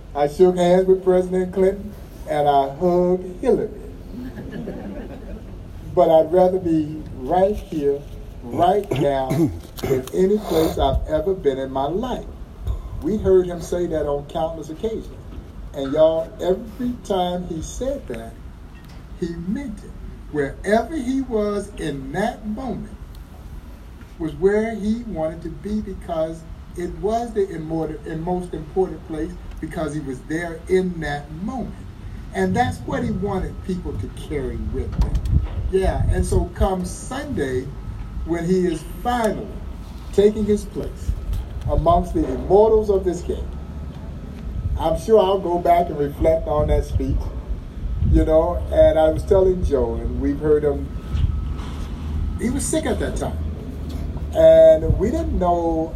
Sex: male